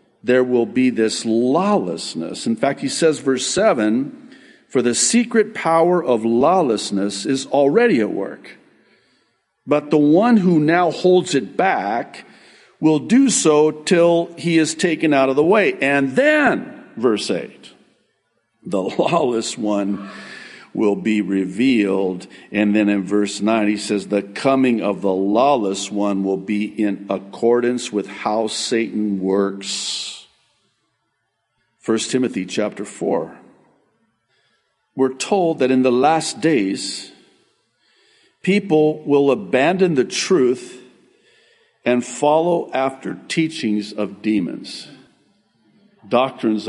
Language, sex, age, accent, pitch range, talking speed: English, male, 50-69, American, 105-170 Hz, 120 wpm